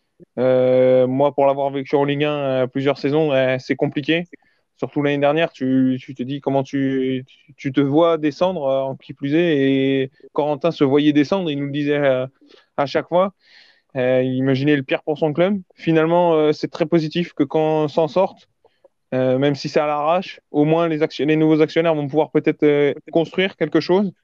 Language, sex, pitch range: French, male, 140-165 Hz